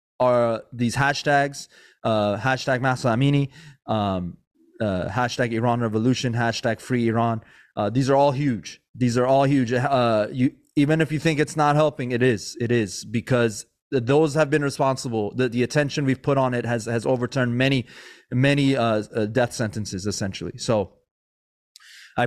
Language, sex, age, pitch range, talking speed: English, male, 20-39, 120-155 Hz, 160 wpm